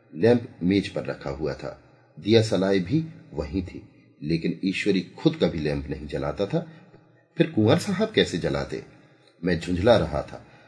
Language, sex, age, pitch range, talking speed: Hindi, male, 40-59, 90-130 Hz, 150 wpm